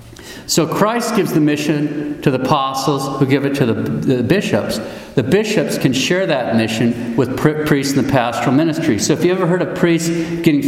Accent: American